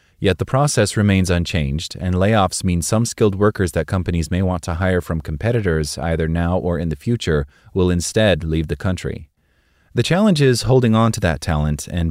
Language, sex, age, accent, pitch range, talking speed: English, male, 30-49, American, 80-100 Hz, 195 wpm